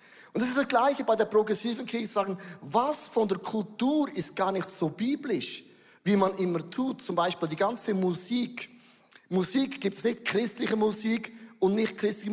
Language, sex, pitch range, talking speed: German, male, 185-230 Hz, 180 wpm